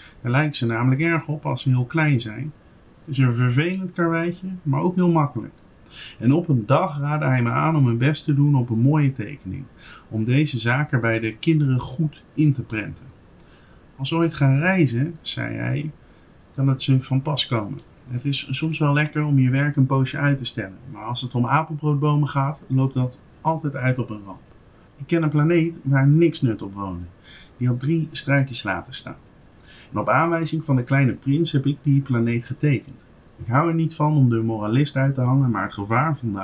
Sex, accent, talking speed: male, Dutch, 210 wpm